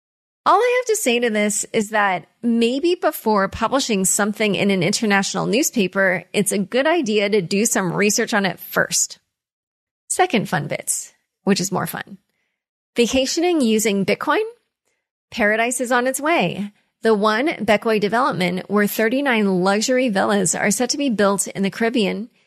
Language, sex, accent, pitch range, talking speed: English, female, American, 195-240 Hz, 160 wpm